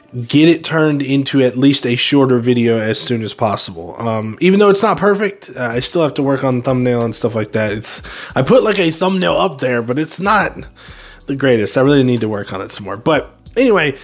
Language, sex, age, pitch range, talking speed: English, male, 20-39, 115-160 Hz, 235 wpm